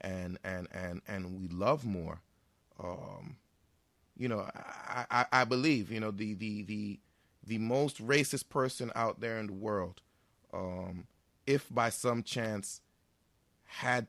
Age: 30-49